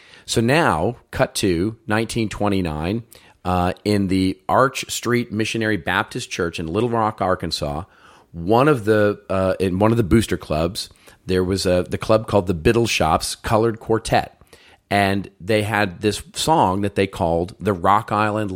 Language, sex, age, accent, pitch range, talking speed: English, male, 40-59, American, 90-110 Hz, 160 wpm